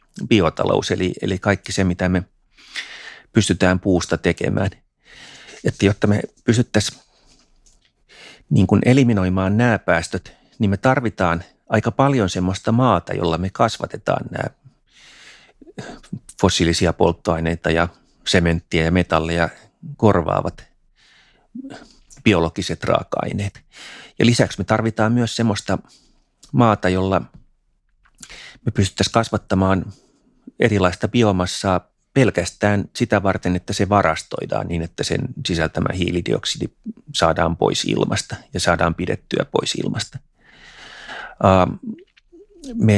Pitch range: 85-110 Hz